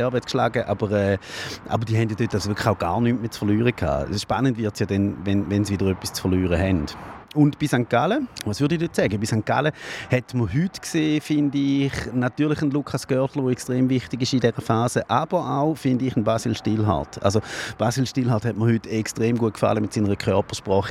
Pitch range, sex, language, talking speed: 110-145 Hz, male, German, 220 wpm